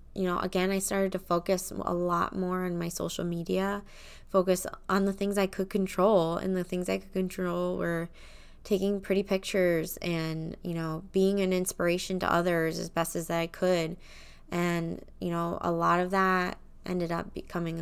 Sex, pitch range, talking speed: female, 155-185 Hz, 180 wpm